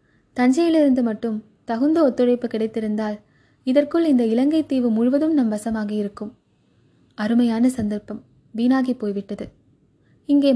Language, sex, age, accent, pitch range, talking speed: Tamil, female, 20-39, native, 215-255 Hz, 95 wpm